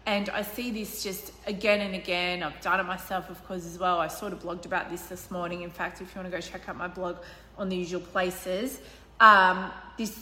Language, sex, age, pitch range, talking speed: English, female, 20-39, 185-225 Hz, 240 wpm